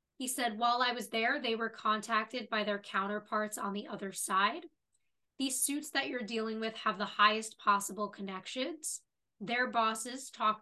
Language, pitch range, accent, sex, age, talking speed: English, 210-255 Hz, American, female, 20-39, 170 wpm